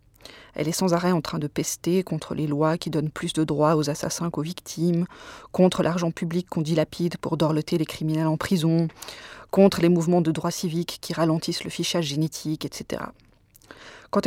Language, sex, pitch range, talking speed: French, female, 160-190 Hz, 185 wpm